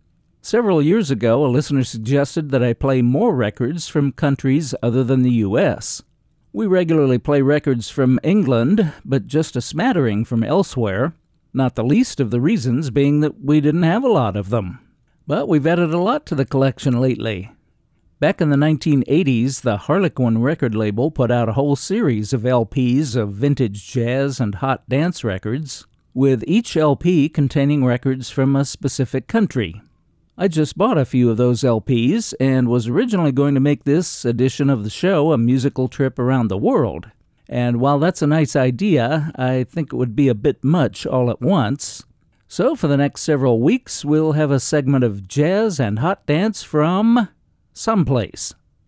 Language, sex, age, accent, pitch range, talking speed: English, male, 50-69, American, 125-155 Hz, 175 wpm